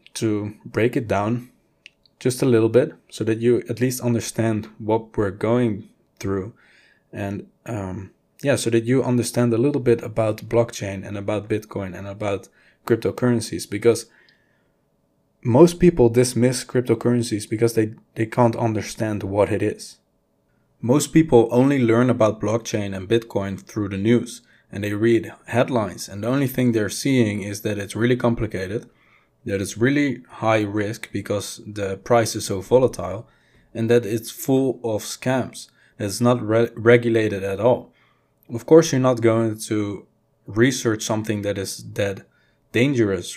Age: 20-39